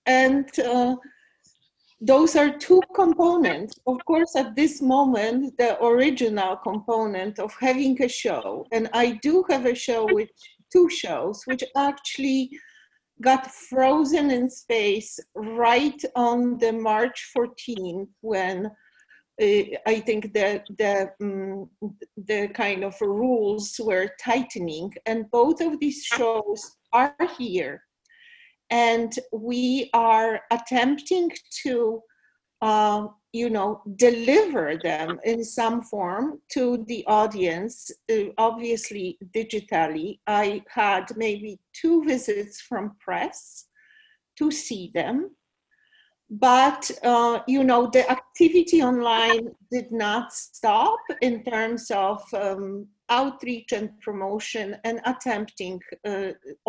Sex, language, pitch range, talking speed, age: female, English, 215-275 Hz, 115 wpm, 40-59